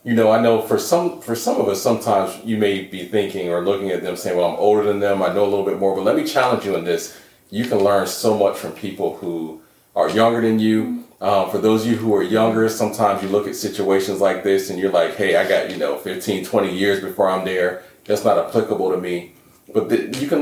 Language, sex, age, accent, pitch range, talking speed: English, male, 30-49, American, 95-110 Hz, 255 wpm